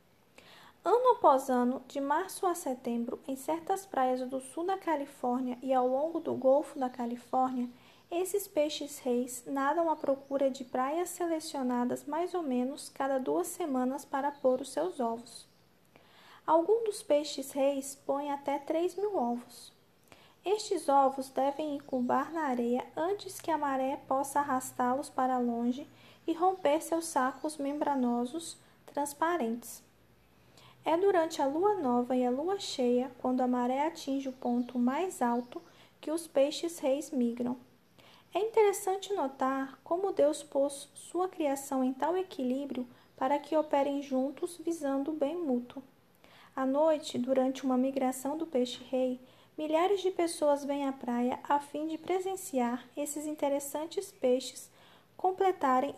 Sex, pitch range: female, 260-320 Hz